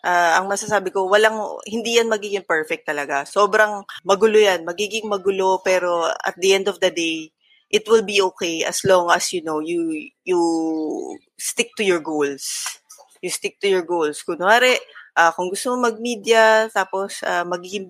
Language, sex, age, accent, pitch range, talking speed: Filipino, female, 20-39, native, 165-215 Hz, 170 wpm